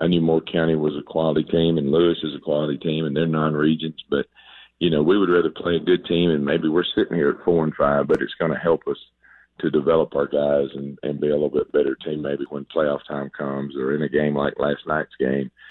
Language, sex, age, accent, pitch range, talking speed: English, male, 50-69, American, 70-80 Hz, 255 wpm